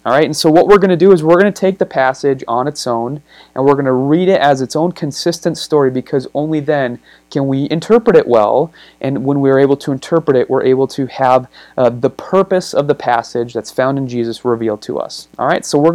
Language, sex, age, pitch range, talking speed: English, male, 30-49, 125-160 Hz, 250 wpm